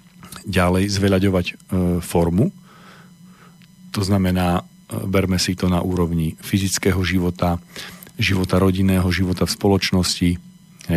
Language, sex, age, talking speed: Slovak, male, 40-59, 95 wpm